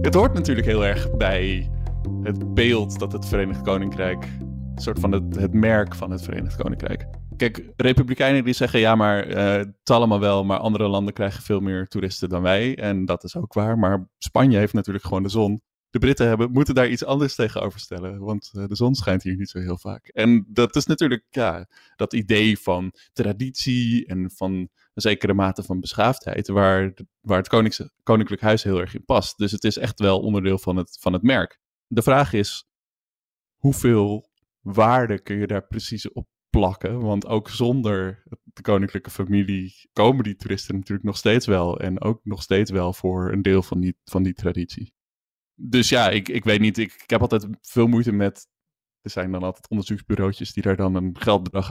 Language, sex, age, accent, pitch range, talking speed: Dutch, male, 20-39, Dutch, 95-110 Hz, 195 wpm